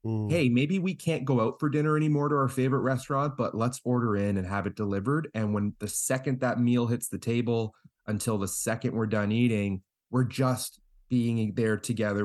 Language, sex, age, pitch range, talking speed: English, male, 30-49, 100-130 Hz, 200 wpm